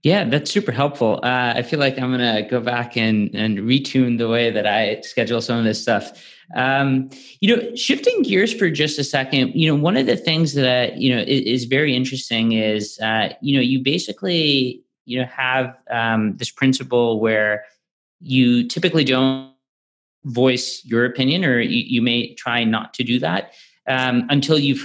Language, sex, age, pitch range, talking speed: English, male, 30-49, 115-145 Hz, 190 wpm